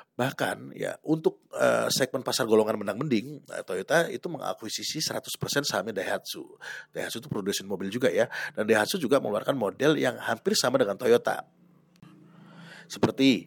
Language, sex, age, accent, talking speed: Indonesian, male, 30-49, native, 145 wpm